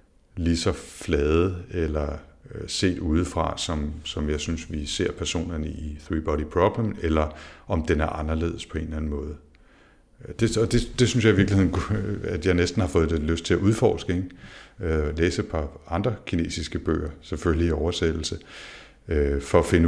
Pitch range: 80-90 Hz